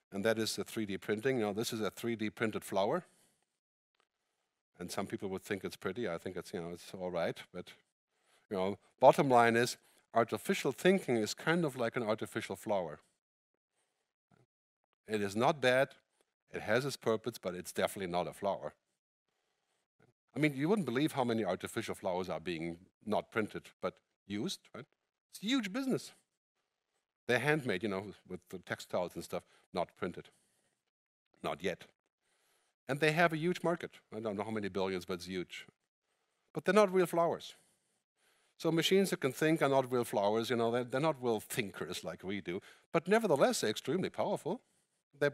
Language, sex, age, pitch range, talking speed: English, male, 50-69, 105-150 Hz, 180 wpm